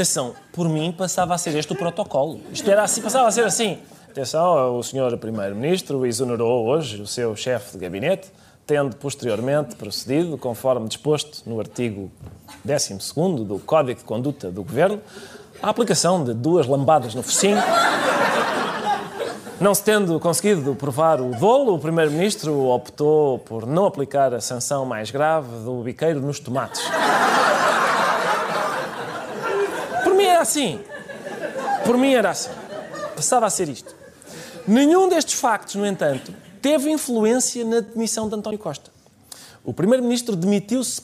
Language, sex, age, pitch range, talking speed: Portuguese, male, 20-39, 135-205 Hz, 140 wpm